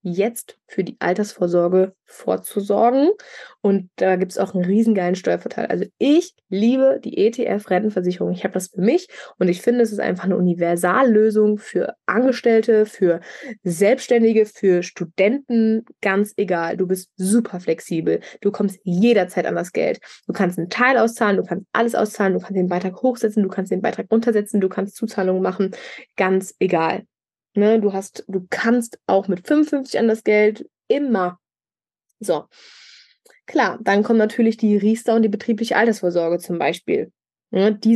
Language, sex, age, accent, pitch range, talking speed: German, female, 20-39, German, 185-230 Hz, 160 wpm